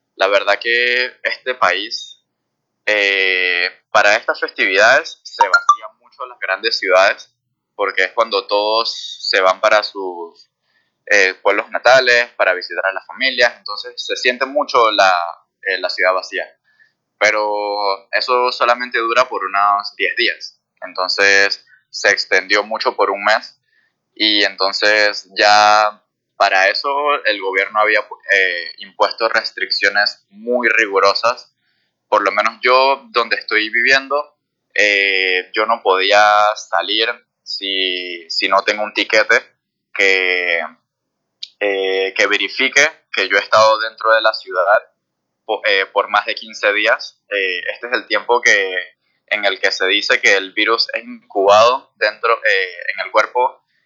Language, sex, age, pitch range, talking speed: Spanish, male, 20-39, 100-145 Hz, 140 wpm